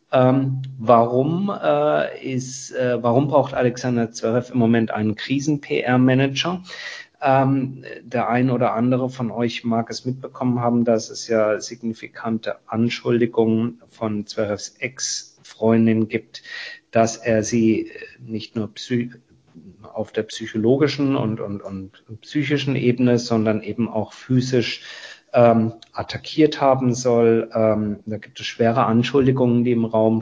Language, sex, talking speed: German, male, 120 wpm